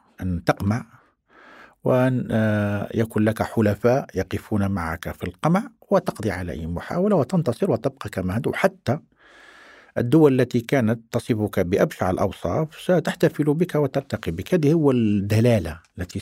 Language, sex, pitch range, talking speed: Arabic, male, 100-140 Hz, 120 wpm